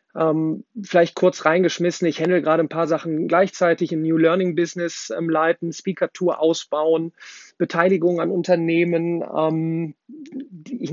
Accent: German